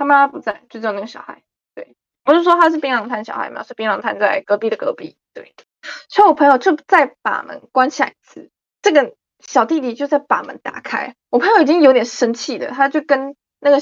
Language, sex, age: Chinese, female, 20-39